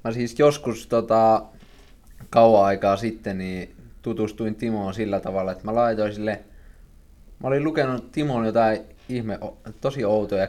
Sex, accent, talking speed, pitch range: male, native, 135 wpm, 100-115 Hz